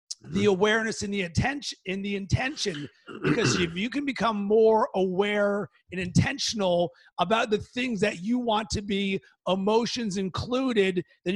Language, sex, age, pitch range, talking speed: English, male, 30-49, 185-220 Hz, 130 wpm